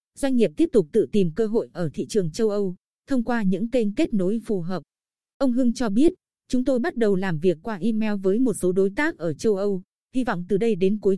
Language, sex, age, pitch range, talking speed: Vietnamese, female, 20-39, 185-235 Hz, 250 wpm